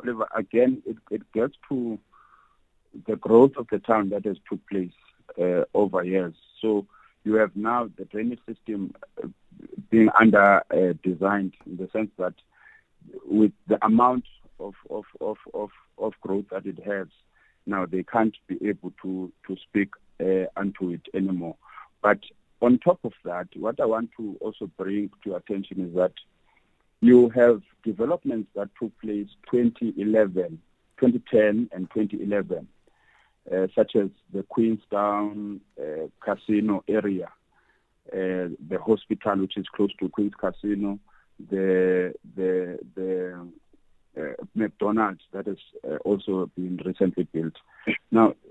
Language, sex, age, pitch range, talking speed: English, male, 50-69, 95-110 Hz, 135 wpm